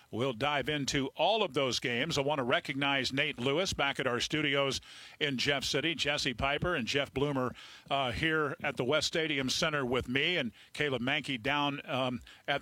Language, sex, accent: English, male, American